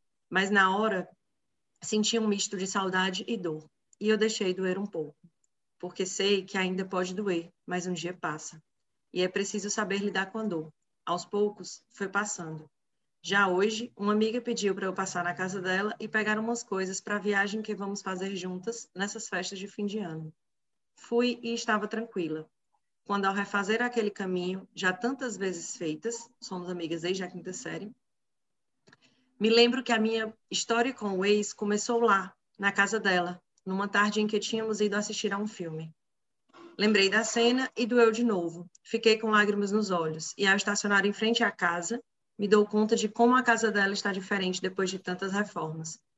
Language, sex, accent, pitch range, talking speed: Portuguese, female, Brazilian, 180-215 Hz, 185 wpm